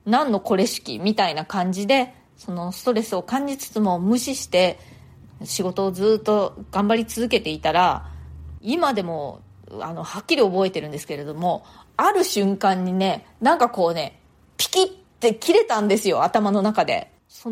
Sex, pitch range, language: female, 180-265 Hz, Japanese